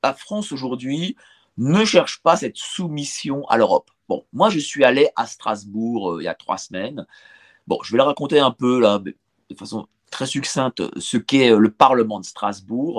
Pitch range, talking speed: 125-175 Hz, 190 wpm